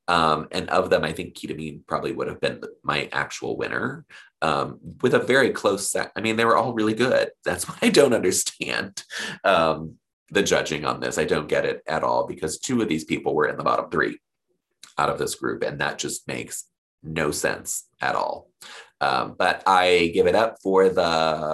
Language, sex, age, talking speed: English, male, 30-49, 205 wpm